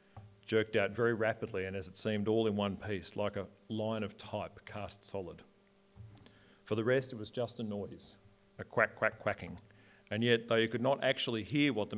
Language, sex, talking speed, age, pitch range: English, male, 205 wpm, 40-59, 100-110 Hz